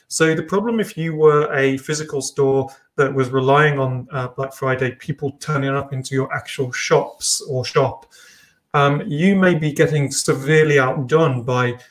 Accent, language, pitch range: British, English, 135-160 Hz